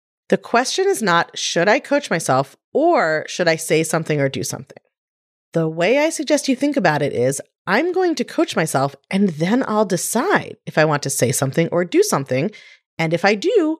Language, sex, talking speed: English, female, 205 wpm